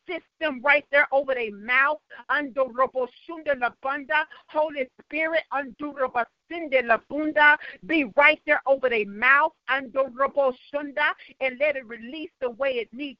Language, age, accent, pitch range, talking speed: English, 50-69, American, 225-300 Hz, 130 wpm